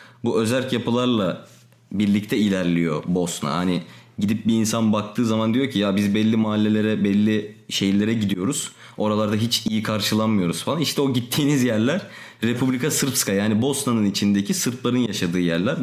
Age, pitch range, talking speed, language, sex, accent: 30-49, 100-125 Hz, 145 wpm, Turkish, male, native